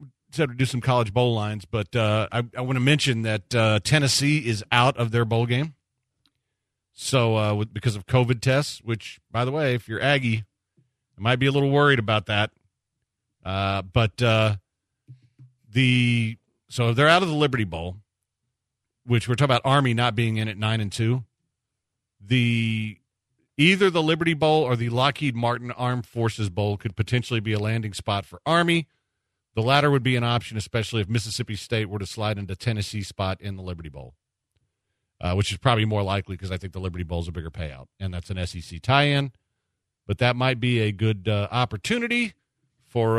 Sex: male